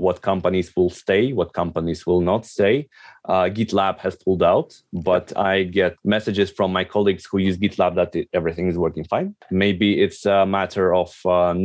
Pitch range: 80-95 Hz